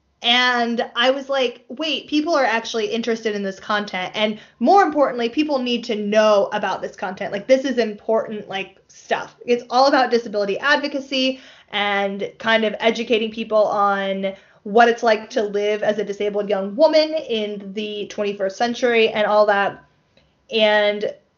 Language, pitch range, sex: English, 200-235 Hz, female